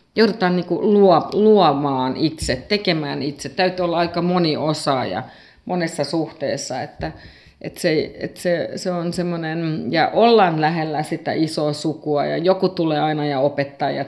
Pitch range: 145-185 Hz